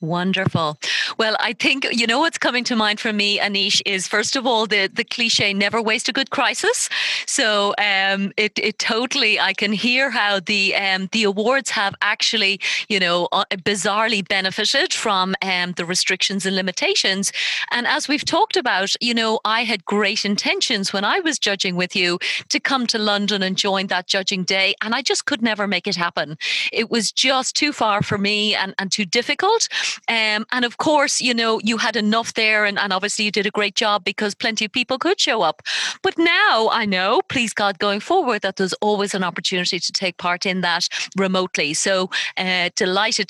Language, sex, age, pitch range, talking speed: English, female, 30-49, 195-230 Hz, 200 wpm